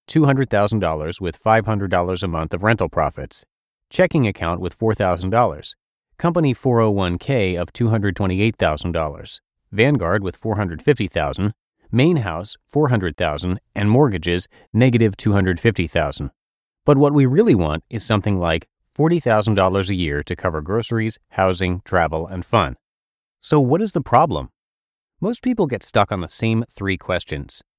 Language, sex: English, male